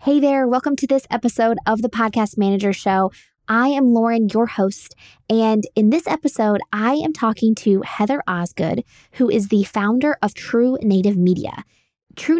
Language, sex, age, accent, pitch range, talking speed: English, female, 20-39, American, 190-240 Hz, 170 wpm